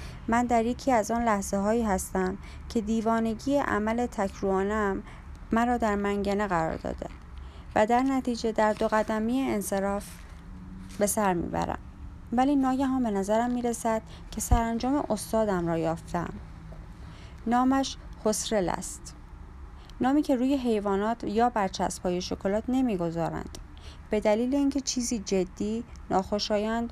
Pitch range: 170-240 Hz